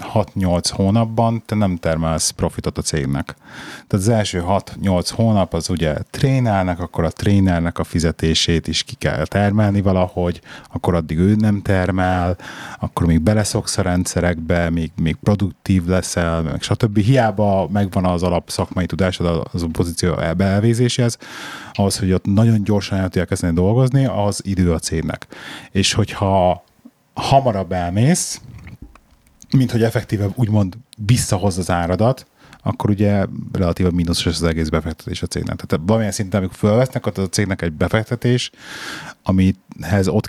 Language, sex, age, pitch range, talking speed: Hungarian, male, 30-49, 90-110 Hz, 145 wpm